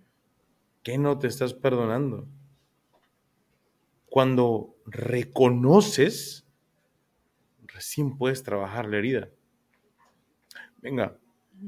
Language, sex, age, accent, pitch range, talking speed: Spanish, male, 30-49, Mexican, 110-140 Hz, 65 wpm